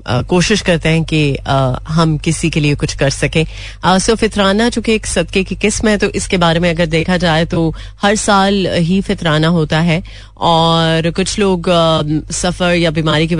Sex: female